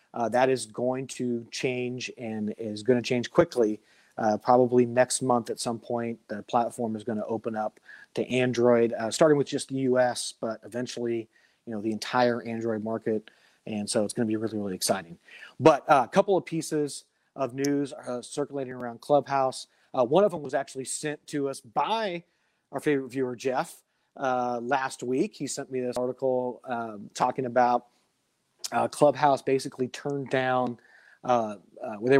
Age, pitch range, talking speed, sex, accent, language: 30-49, 115-140 Hz, 180 wpm, male, American, English